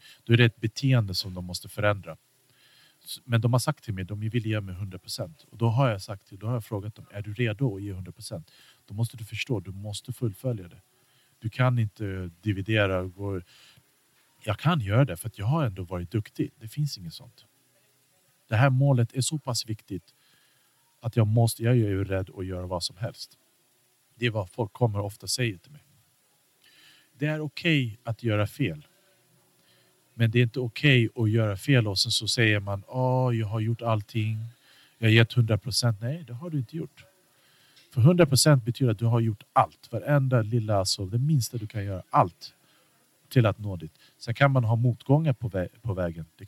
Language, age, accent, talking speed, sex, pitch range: Swedish, 50-69, Norwegian, 215 wpm, male, 110-130 Hz